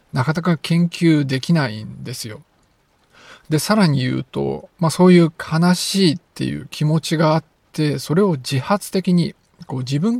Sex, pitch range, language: male, 135-185 Hz, Japanese